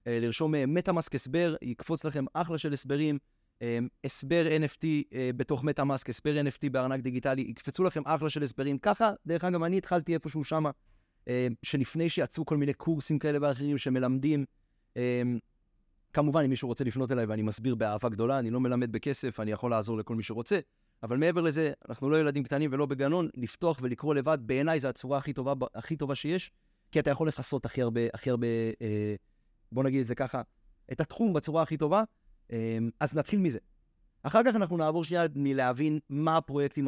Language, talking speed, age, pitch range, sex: Hebrew, 150 wpm, 30-49, 120-160 Hz, male